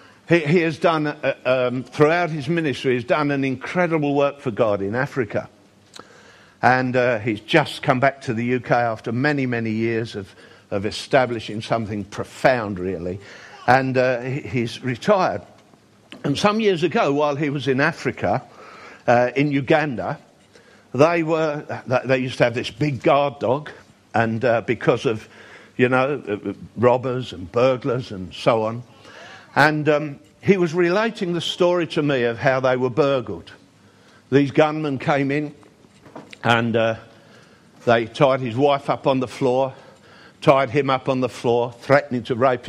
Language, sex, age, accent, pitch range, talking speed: English, male, 50-69, British, 120-150 Hz, 155 wpm